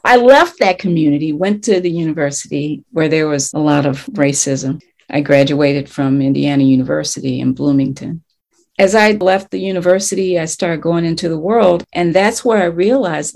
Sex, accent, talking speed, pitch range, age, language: female, American, 170 wpm, 160-220 Hz, 50-69, English